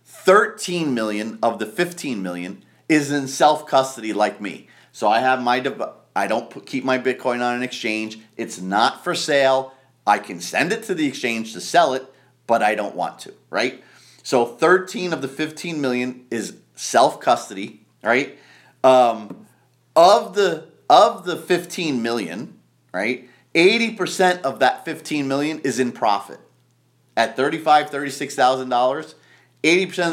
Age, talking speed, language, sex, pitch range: 30-49, 150 wpm, English, male, 115-150 Hz